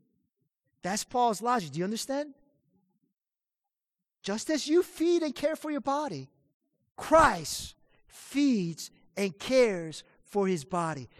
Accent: American